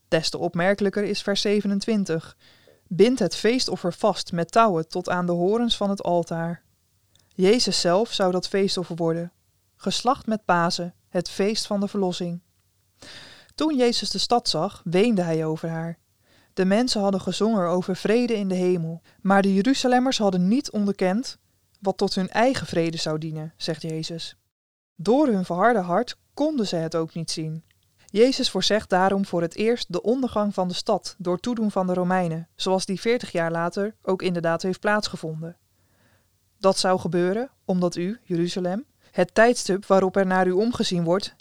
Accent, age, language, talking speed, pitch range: Dutch, 20-39, Dutch, 165 wpm, 170-210 Hz